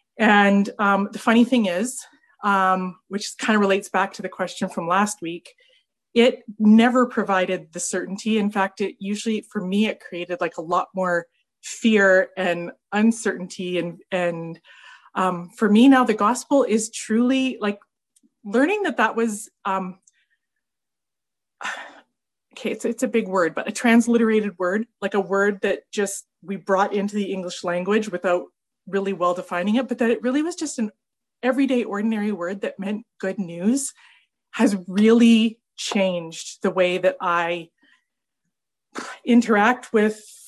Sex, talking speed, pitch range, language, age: female, 155 wpm, 190-240 Hz, English, 20-39